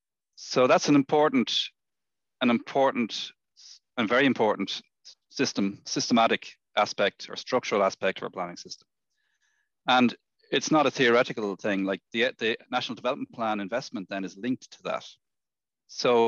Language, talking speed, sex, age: English, 140 wpm, male, 30-49